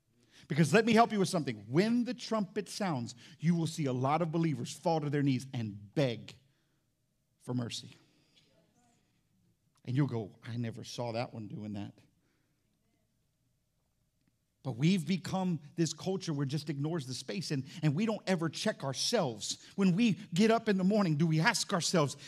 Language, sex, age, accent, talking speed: English, male, 50-69, American, 175 wpm